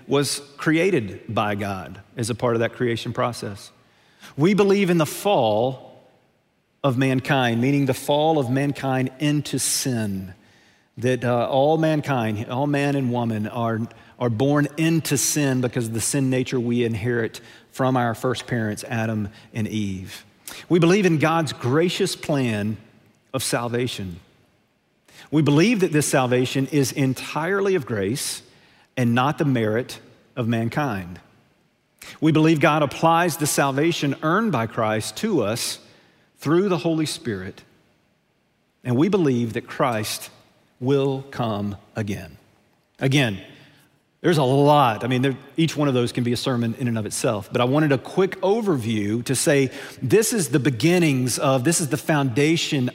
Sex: male